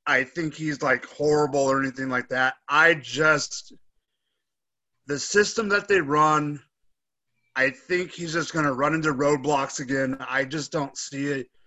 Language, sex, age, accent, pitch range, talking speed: English, male, 30-49, American, 135-165 Hz, 155 wpm